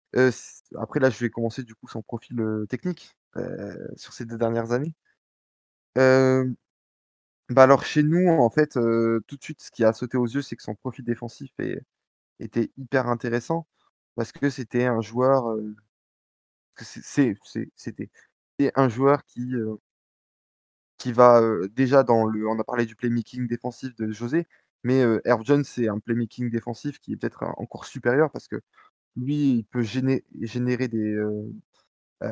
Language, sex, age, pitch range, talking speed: French, male, 20-39, 110-135 Hz, 165 wpm